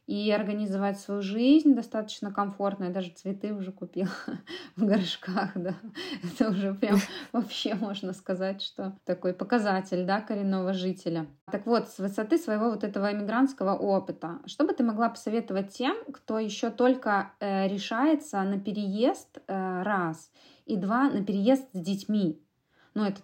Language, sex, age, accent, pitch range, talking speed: Russian, female, 20-39, native, 185-220 Hz, 140 wpm